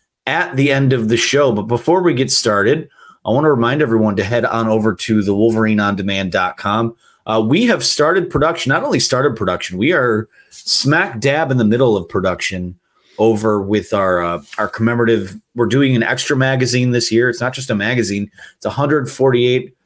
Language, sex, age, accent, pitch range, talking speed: English, male, 30-49, American, 110-130 Hz, 185 wpm